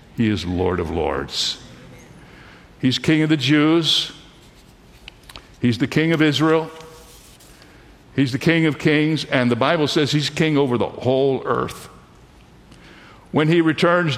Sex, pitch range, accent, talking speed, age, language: male, 125-155 Hz, American, 140 wpm, 60-79, English